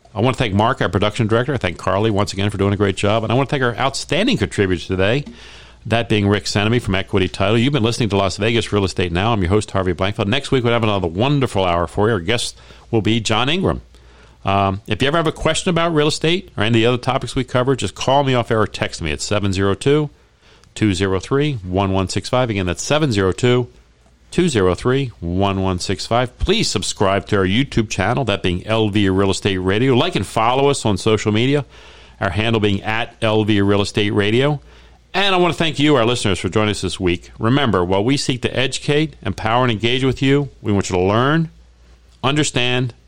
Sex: male